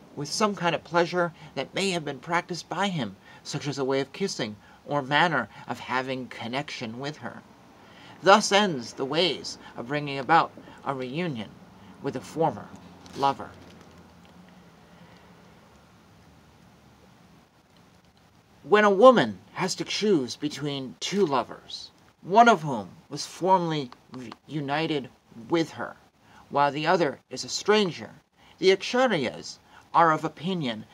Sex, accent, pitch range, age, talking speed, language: male, American, 130-180 Hz, 40-59, 130 wpm, English